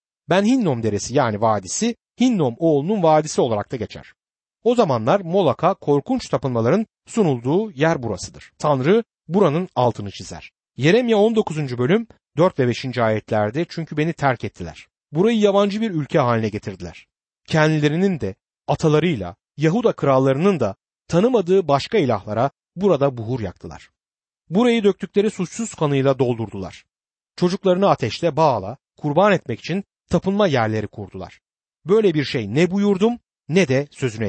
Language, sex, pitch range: Turkish, male, 115-195 Hz